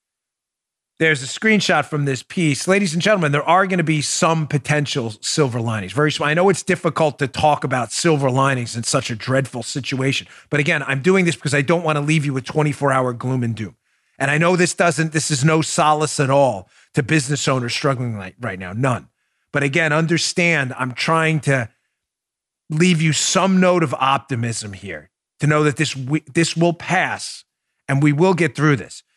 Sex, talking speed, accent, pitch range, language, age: male, 195 wpm, American, 130-160 Hz, English, 30-49